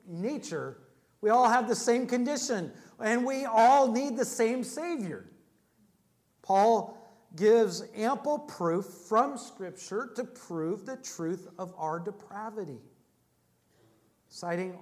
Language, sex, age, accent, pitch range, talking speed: English, male, 50-69, American, 185-230 Hz, 115 wpm